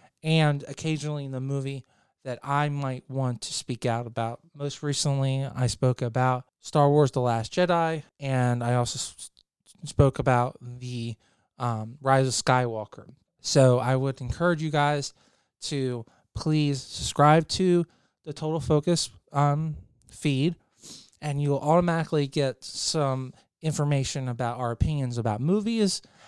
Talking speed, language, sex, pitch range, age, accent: 135 wpm, English, male, 125-145 Hz, 20-39, American